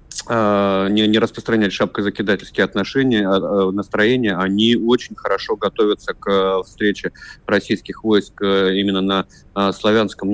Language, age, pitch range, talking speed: Russian, 30-49, 100-110 Hz, 95 wpm